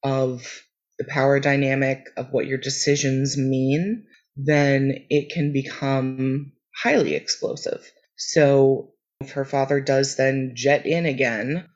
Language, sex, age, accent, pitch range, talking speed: English, female, 30-49, American, 135-165 Hz, 125 wpm